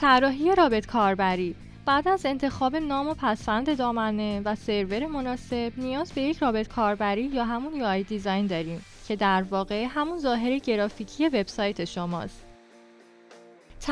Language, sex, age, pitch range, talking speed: Persian, female, 10-29, 205-275 Hz, 135 wpm